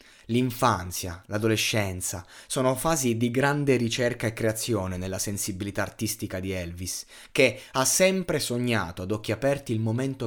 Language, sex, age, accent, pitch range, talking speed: Italian, male, 30-49, native, 100-135 Hz, 135 wpm